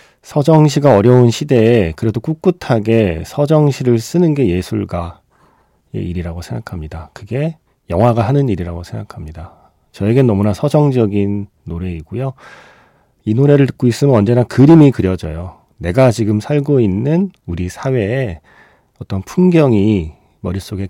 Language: Korean